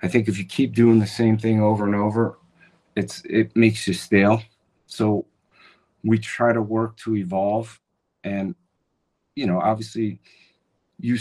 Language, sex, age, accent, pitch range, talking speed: English, male, 40-59, American, 95-110 Hz, 155 wpm